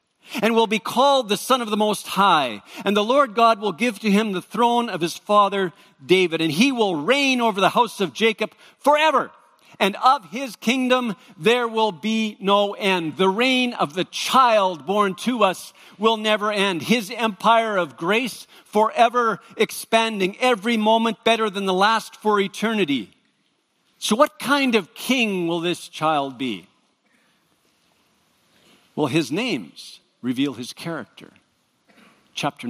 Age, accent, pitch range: 50-69, American, 180-230 Hz